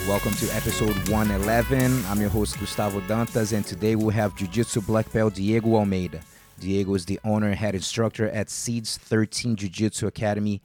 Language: English